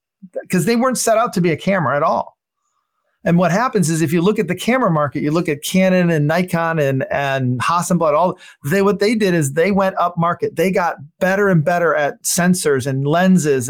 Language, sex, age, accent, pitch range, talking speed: English, male, 40-59, American, 155-190 Hz, 220 wpm